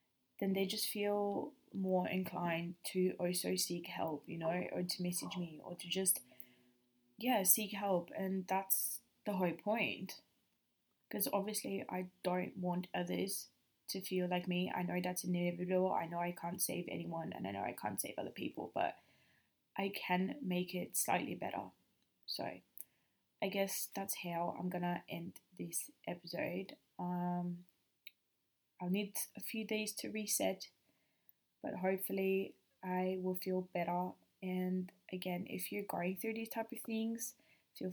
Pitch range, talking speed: 180-210 Hz, 150 wpm